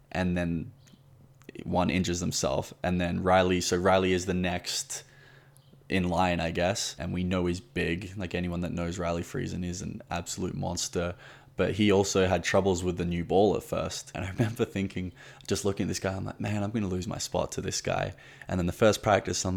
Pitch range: 90-110 Hz